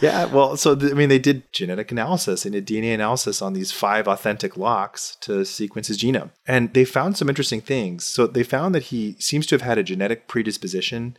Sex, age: male, 30-49